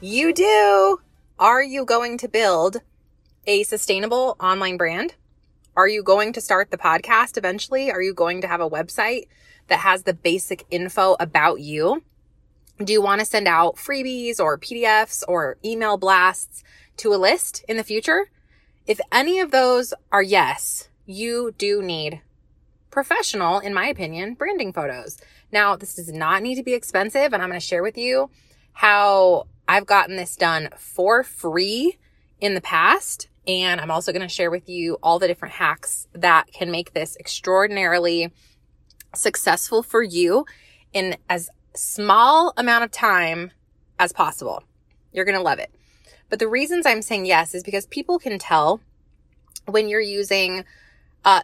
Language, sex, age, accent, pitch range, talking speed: English, female, 20-39, American, 175-230 Hz, 160 wpm